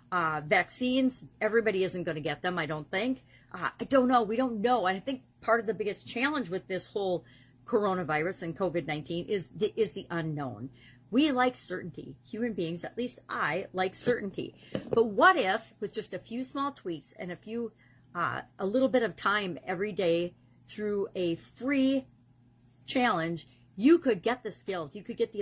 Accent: American